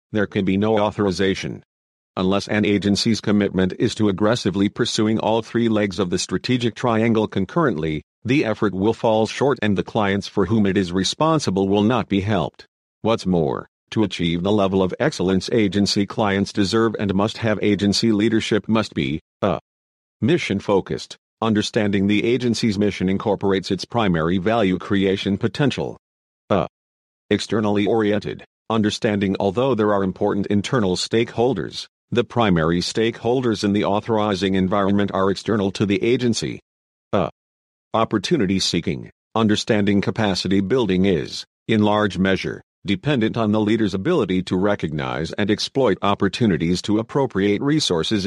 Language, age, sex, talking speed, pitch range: English, 50-69, male, 140 wpm, 95-110 Hz